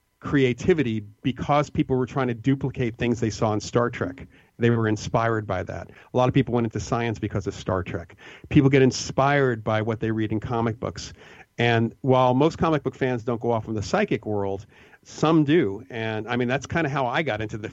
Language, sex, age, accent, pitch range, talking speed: English, male, 40-59, American, 110-130 Hz, 220 wpm